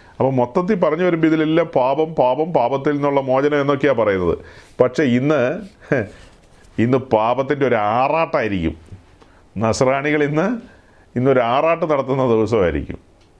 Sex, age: male, 40-59